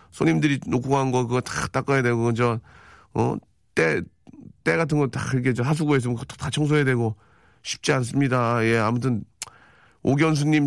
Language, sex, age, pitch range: Korean, male, 40-59, 115-155 Hz